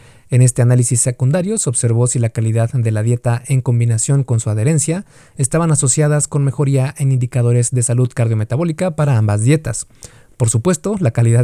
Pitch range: 120-145 Hz